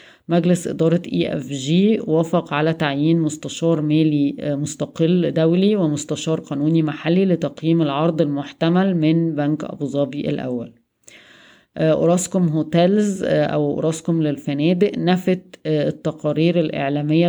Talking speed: 110 wpm